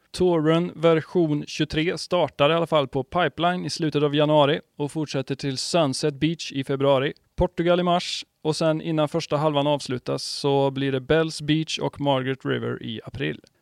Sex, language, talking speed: male, Swedish, 170 wpm